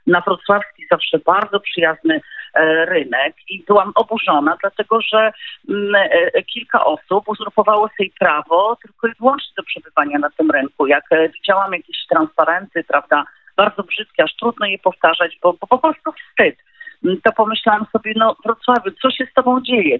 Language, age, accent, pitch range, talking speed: Polish, 40-59, native, 180-265 Hz, 150 wpm